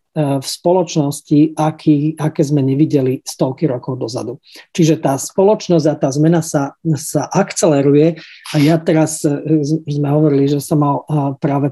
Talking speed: 140 wpm